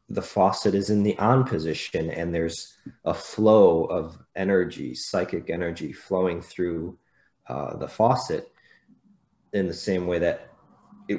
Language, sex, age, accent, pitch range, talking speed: English, male, 30-49, American, 85-100 Hz, 140 wpm